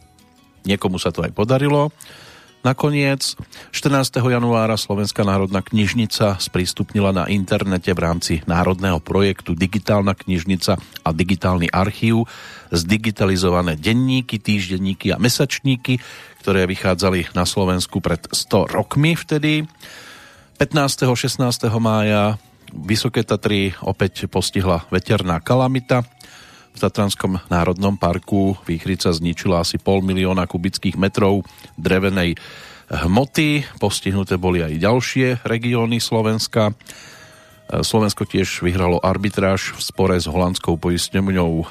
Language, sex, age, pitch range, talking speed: Slovak, male, 40-59, 90-115 Hz, 105 wpm